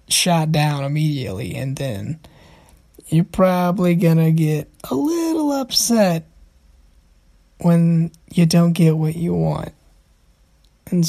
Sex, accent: male, American